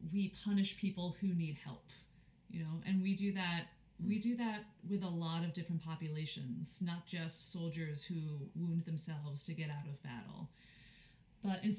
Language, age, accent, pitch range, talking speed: English, 30-49, American, 160-200 Hz, 170 wpm